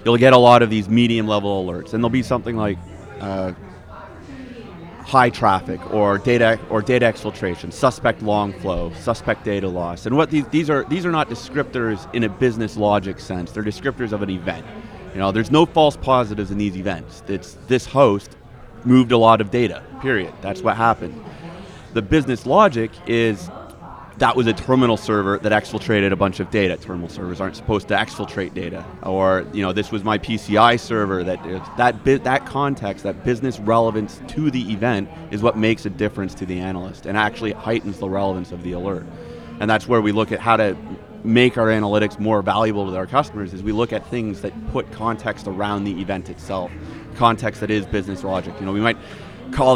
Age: 30-49